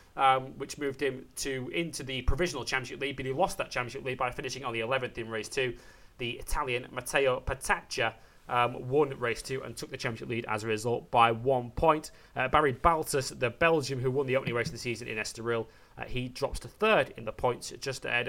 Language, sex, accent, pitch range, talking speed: English, male, British, 120-150 Hz, 225 wpm